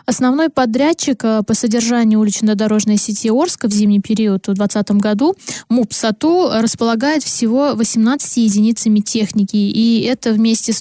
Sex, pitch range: female, 210-245 Hz